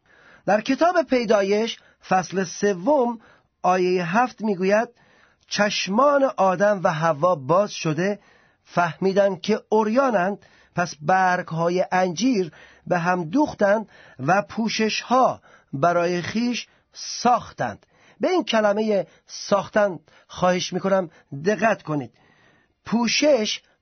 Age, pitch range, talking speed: 40-59, 180-225 Hz, 100 wpm